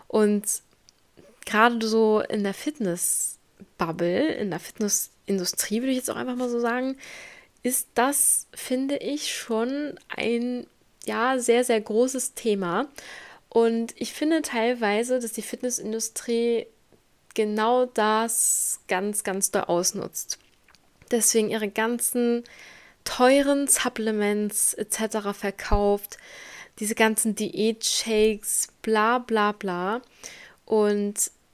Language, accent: German, German